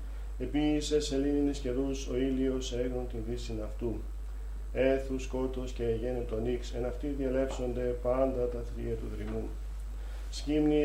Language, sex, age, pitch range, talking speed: Greek, male, 40-59, 115-135 Hz, 135 wpm